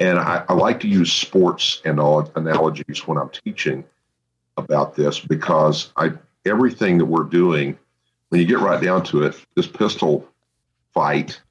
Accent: American